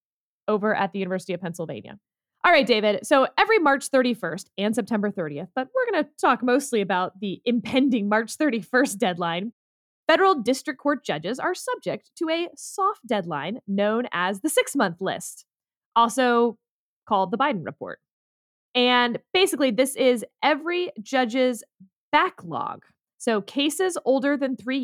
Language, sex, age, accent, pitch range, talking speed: English, female, 20-39, American, 200-285 Hz, 145 wpm